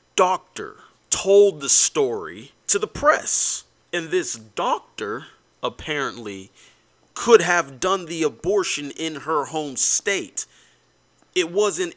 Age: 30-49